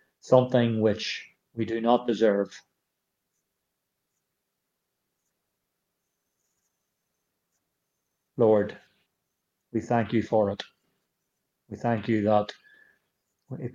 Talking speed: 75 wpm